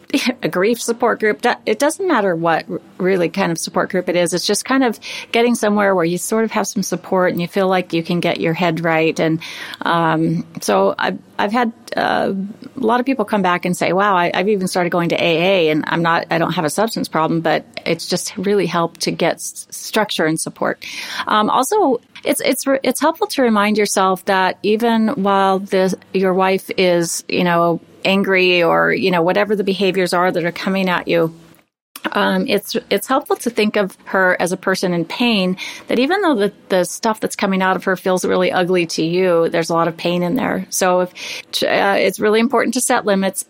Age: 30-49